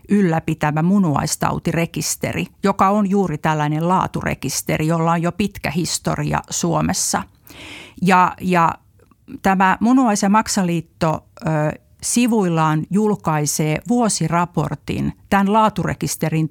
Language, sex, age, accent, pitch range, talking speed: Finnish, female, 50-69, native, 155-195 Hz, 85 wpm